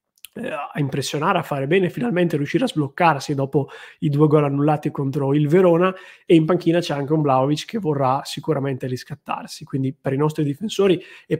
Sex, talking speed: male, 180 wpm